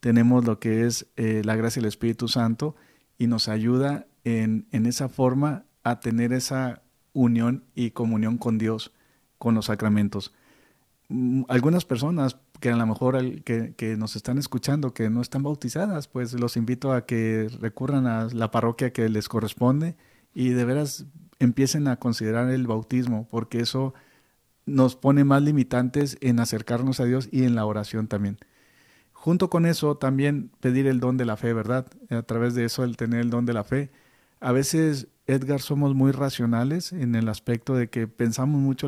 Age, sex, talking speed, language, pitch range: 40-59, male, 175 wpm, Spanish, 115-135 Hz